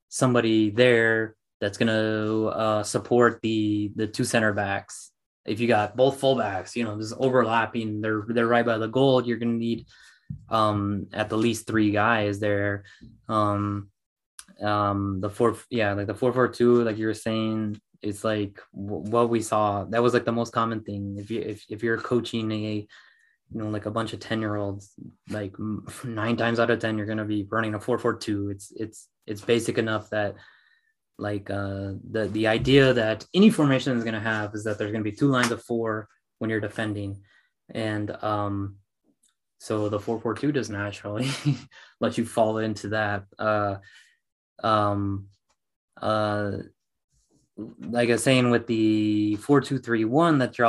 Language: English